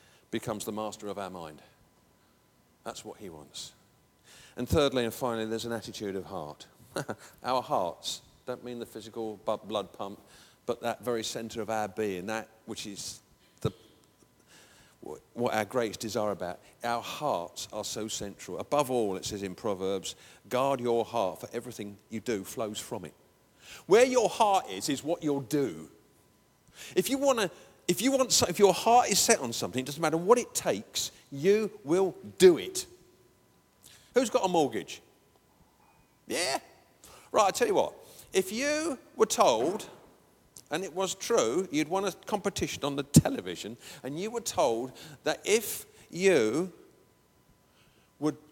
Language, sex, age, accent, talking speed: English, male, 50-69, British, 160 wpm